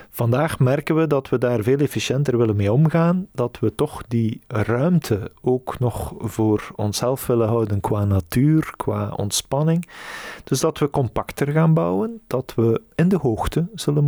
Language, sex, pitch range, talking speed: Dutch, male, 110-150 Hz, 165 wpm